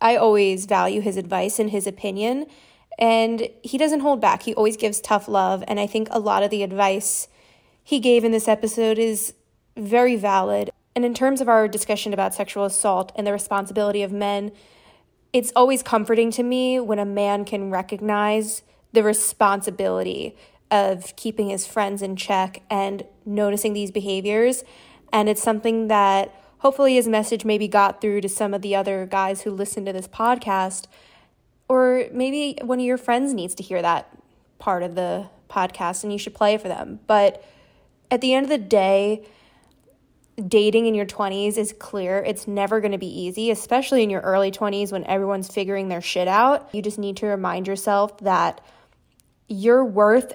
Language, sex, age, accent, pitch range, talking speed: English, female, 20-39, American, 195-225 Hz, 180 wpm